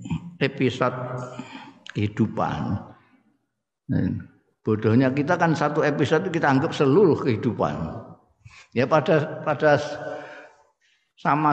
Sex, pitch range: male, 115-170 Hz